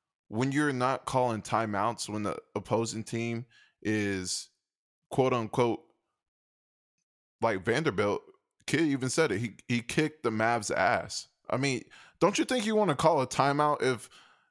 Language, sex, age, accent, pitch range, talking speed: English, male, 20-39, American, 110-130 Hz, 150 wpm